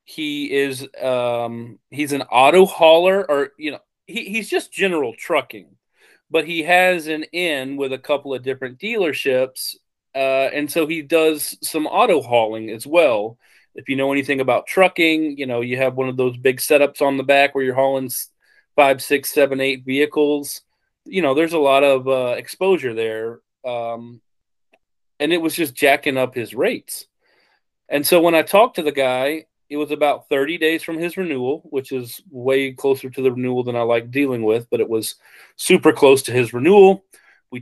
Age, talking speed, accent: 30-49, 185 wpm, American